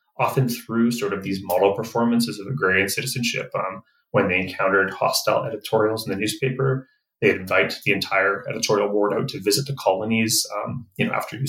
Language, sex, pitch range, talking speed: English, male, 100-135 Hz, 185 wpm